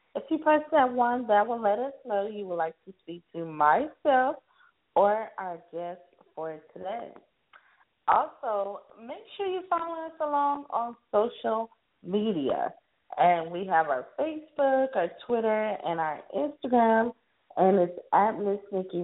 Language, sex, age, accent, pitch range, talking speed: English, female, 20-39, American, 170-235 Hz, 150 wpm